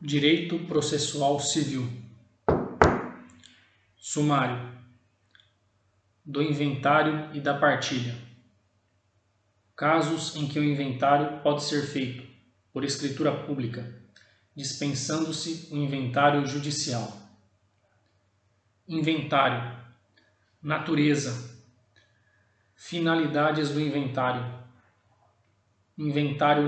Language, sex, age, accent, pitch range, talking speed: Portuguese, male, 20-39, Brazilian, 105-145 Hz, 65 wpm